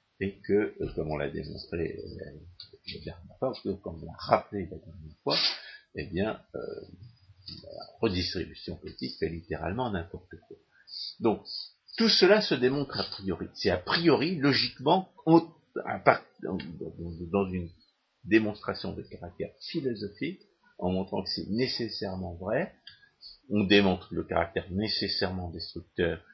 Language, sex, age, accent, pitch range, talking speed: French, male, 50-69, French, 90-130 Hz, 125 wpm